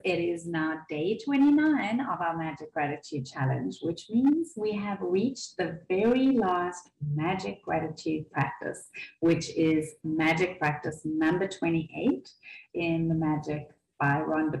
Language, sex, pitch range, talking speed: English, female, 155-225 Hz, 130 wpm